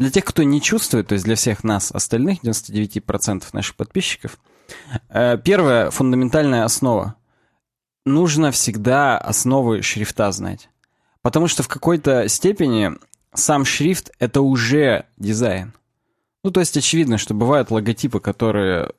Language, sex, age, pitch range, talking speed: Russian, male, 20-39, 110-140 Hz, 125 wpm